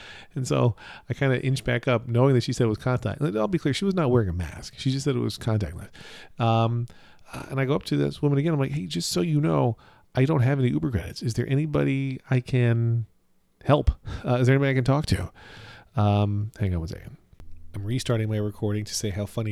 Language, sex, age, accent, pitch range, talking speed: English, male, 40-59, American, 100-130 Hz, 240 wpm